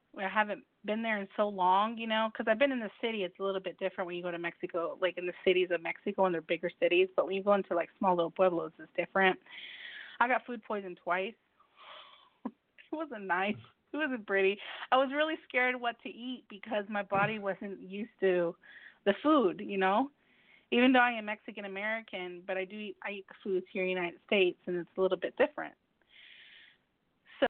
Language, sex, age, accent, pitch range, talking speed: English, female, 30-49, American, 185-225 Hz, 215 wpm